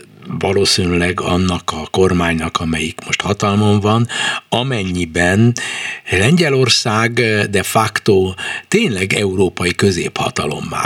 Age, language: 60-79, Hungarian